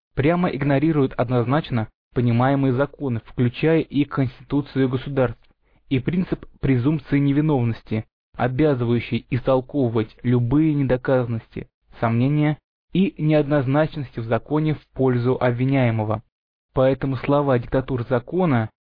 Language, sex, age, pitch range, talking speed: Russian, male, 20-39, 125-150 Hz, 90 wpm